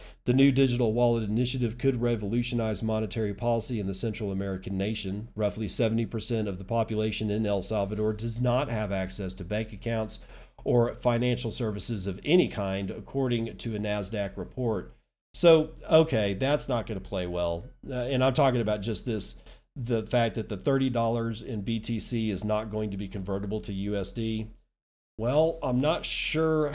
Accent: American